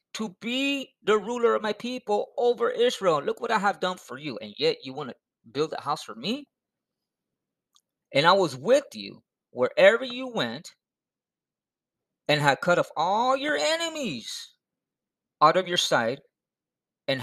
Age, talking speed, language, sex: 30-49, 160 wpm, English, male